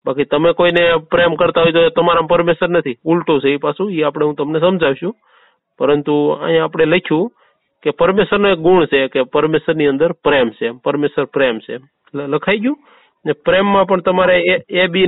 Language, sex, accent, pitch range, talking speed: Gujarati, male, native, 160-195 Hz, 185 wpm